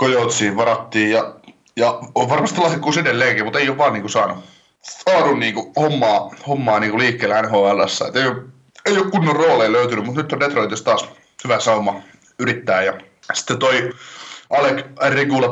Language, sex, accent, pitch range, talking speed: Finnish, male, native, 110-135 Hz, 160 wpm